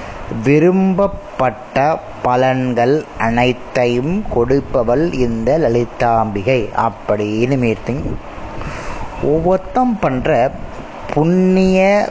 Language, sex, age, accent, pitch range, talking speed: Tamil, male, 20-39, native, 120-170 Hz, 55 wpm